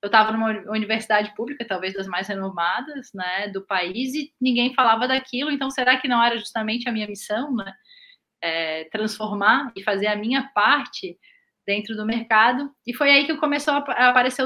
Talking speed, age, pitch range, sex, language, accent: 180 wpm, 10-29, 200-250 Hz, female, Portuguese, Brazilian